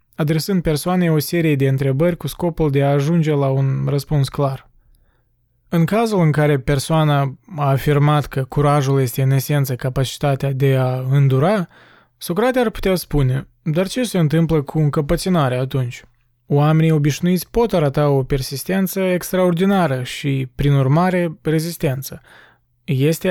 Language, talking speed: Romanian, 140 wpm